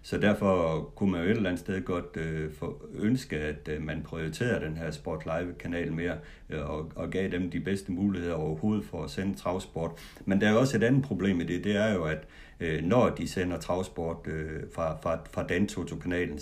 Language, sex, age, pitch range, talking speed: Danish, male, 60-79, 80-95 Hz, 180 wpm